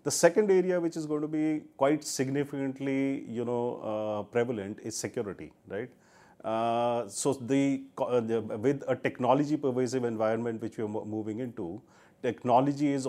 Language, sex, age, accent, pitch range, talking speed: English, male, 40-59, Indian, 110-135 Hz, 150 wpm